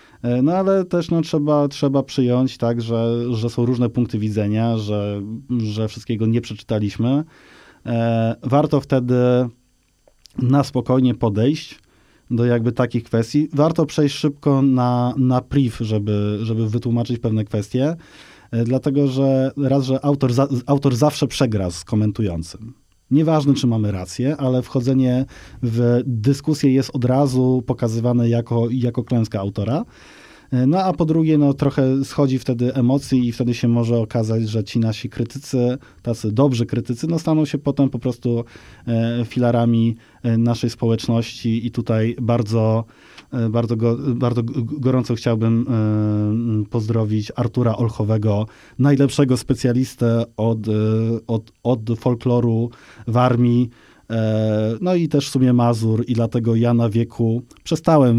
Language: Polish